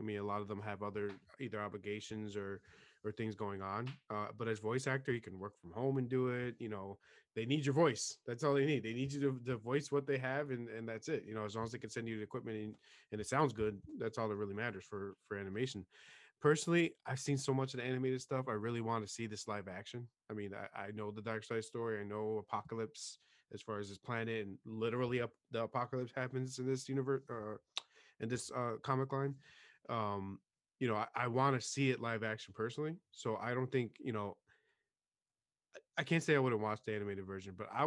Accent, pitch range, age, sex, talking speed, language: American, 105-130 Hz, 20-39, male, 245 wpm, English